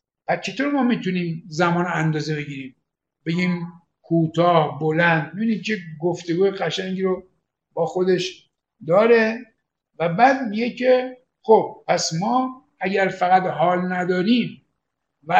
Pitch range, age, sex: 175-200 Hz, 60-79, male